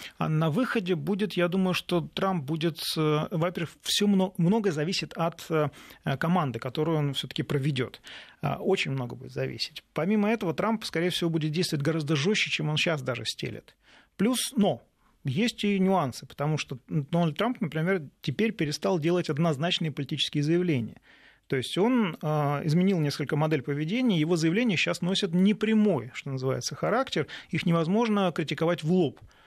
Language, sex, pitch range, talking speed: Russian, male, 140-180 Hz, 145 wpm